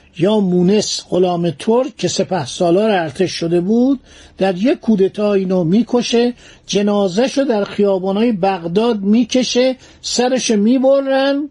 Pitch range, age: 165-225 Hz, 50-69